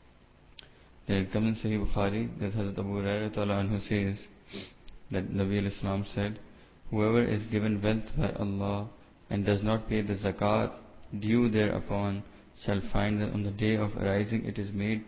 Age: 20-39